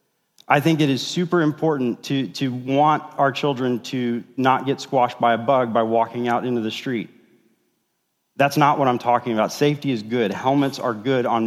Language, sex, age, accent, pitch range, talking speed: English, male, 30-49, American, 130-160 Hz, 195 wpm